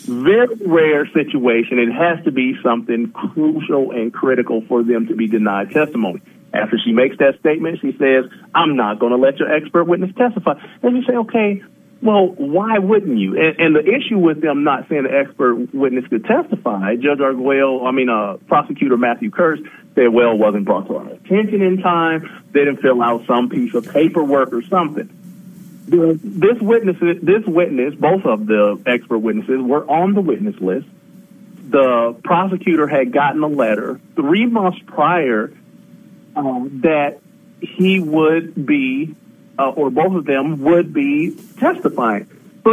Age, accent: 40-59, American